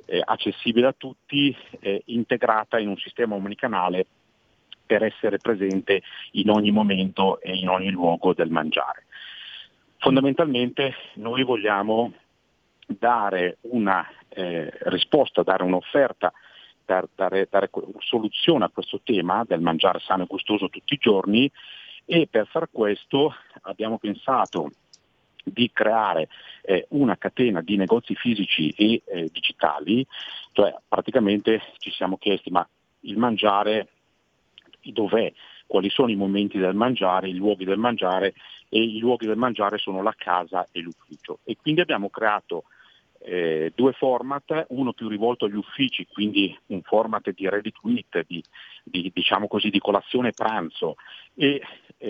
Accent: native